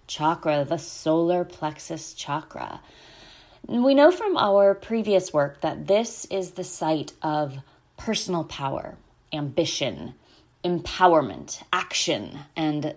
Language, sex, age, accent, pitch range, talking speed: English, female, 30-49, American, 155-195 Hz, 105 wpm